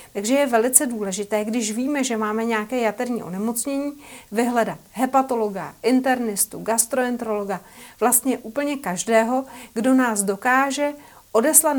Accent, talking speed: native, 110 wpm